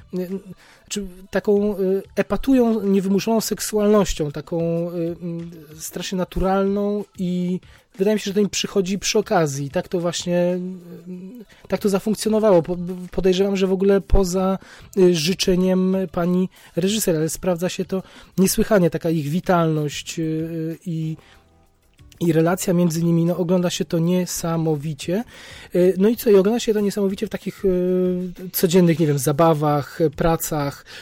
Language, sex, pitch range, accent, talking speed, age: Polish, male, 160-190 Hz, native, 125 wpm, 30-49